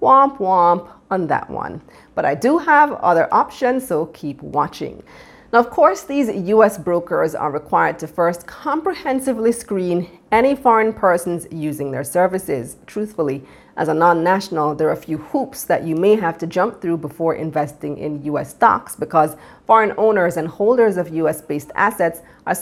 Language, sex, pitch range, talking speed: English, female, 155-225 Hz, 165 wpm